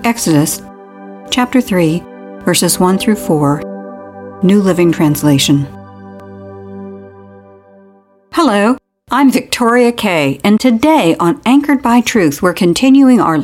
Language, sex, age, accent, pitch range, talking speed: English, female, 60-79, American, 155-235 Hz, 105 wpm